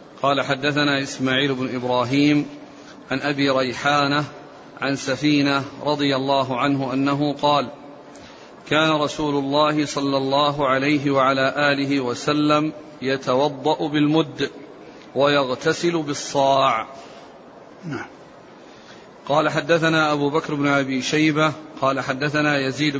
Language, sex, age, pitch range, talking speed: Arabic, male, 40-59, 140-155 Hz, 100 wpm